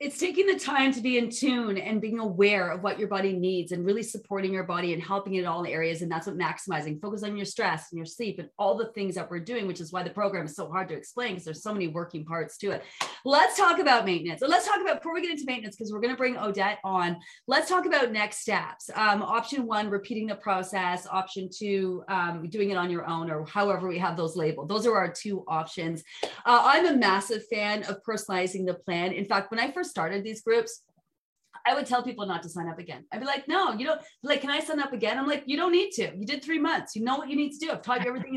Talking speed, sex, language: 265 wpm, female, English